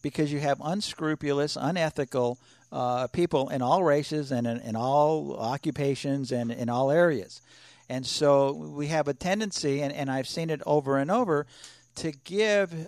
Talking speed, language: 165 wpm, English